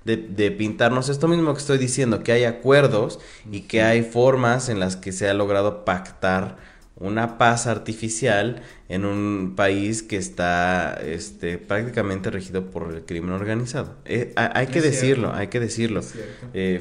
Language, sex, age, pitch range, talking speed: Spanish, male, 20-39, 95-115 Hz, 160 wpm